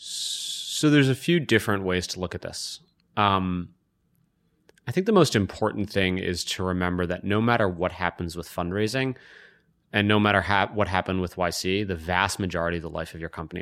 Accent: American